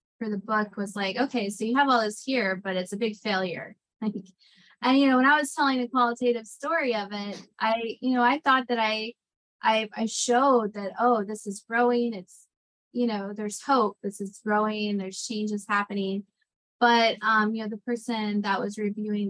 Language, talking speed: English, 200 wpm